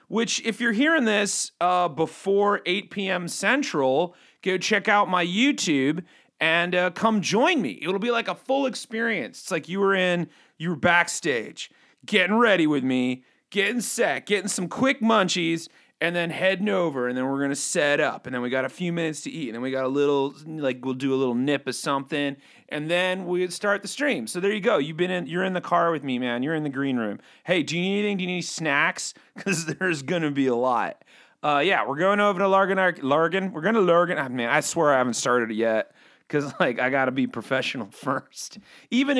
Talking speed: 225 wpm